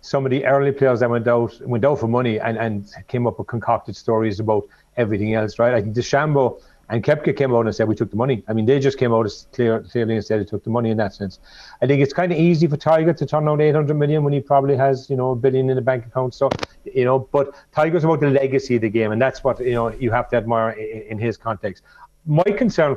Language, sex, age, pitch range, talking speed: English, male, 40-59, 115-140 Hz, 275 wpm